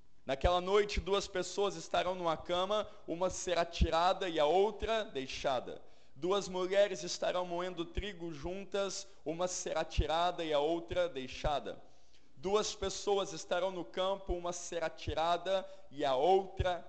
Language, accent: Portuguese, Brazilian